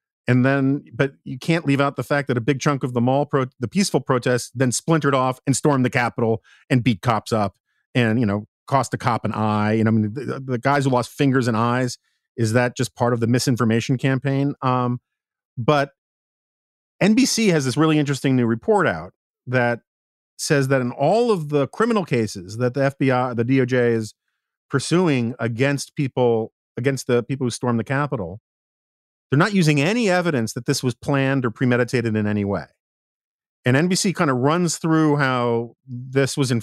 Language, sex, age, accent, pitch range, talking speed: English, male, 40-59, American, 120-140 Hz, 190 wpm